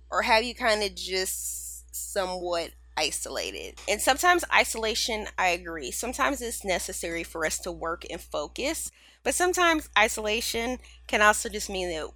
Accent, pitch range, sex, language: American, 160-215 Hz, female, English